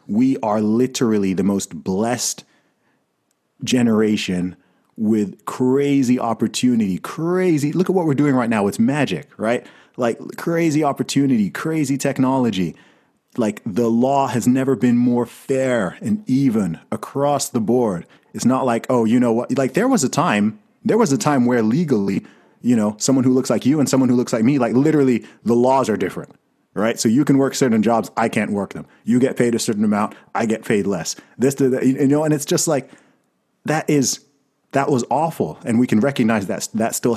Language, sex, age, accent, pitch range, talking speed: English, male, 30-49, American, 110-140 Hz, 190 wpm